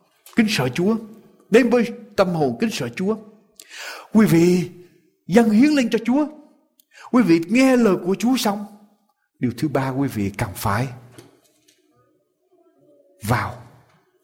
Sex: male